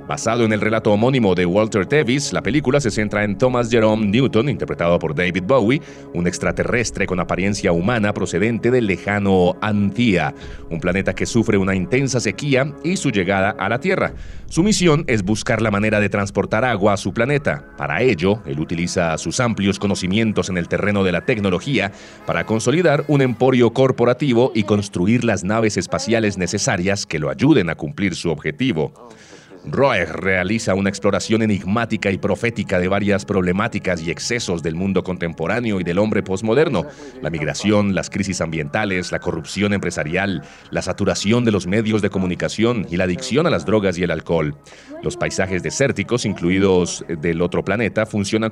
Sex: male